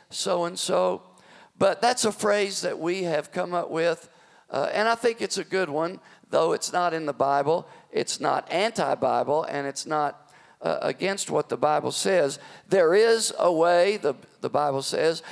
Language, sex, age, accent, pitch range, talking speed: English, male, 50-69, American, 165-225 Hz, 175 wpm